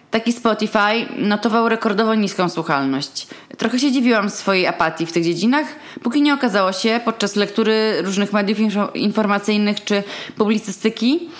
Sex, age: female, 20-39